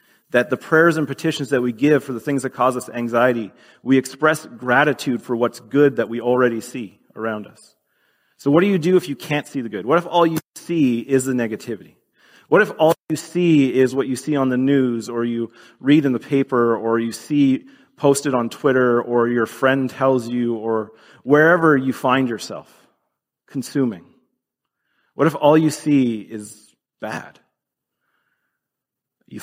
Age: 30-49